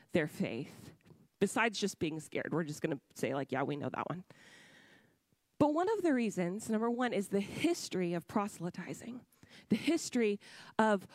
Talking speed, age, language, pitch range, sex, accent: 170 wpm, 30-49, English, 210-290 Hz, female, American